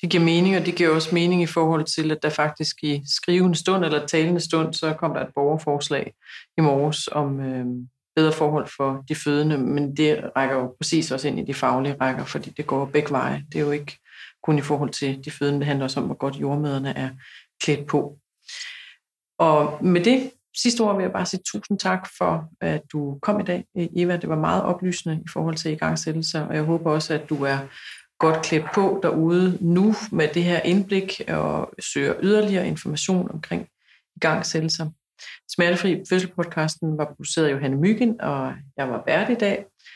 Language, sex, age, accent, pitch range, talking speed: Danish, female, 30-49, native, 150-180 Hz, 200 wpm